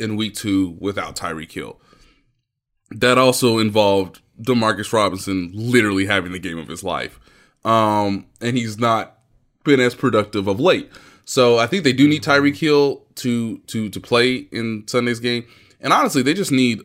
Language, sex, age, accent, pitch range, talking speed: English, male, 20-39, American, 100-130 Hz, 165 wpm